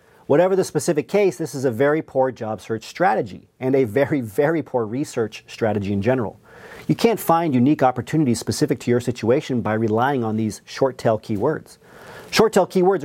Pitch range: 120-160 Hz